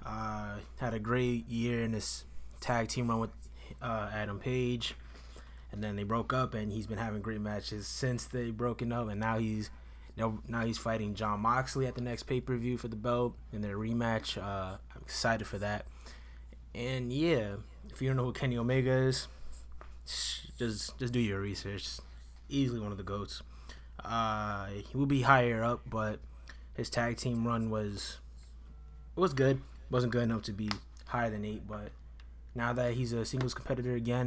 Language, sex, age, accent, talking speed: English, male, 20-39, American, 180 wpm